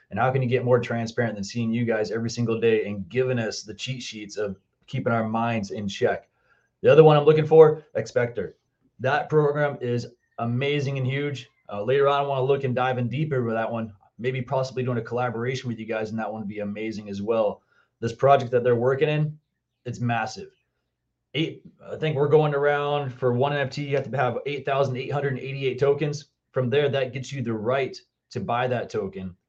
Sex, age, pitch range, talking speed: male, 30-49, 115-140 Hz, 210 wpm